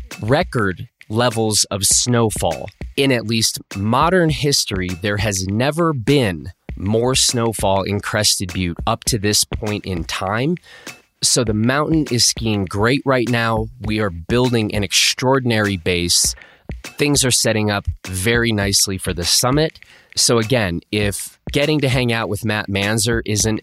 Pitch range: 95-125 Hz